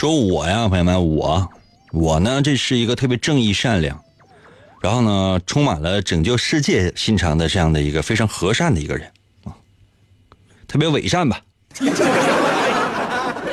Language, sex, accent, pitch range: Chinese, male, native, 95-120 Hz